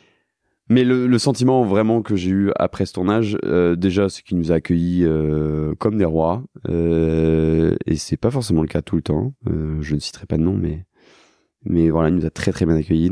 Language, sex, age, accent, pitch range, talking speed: French, male, 20-39, French, 80-105 Hz, 225 wpm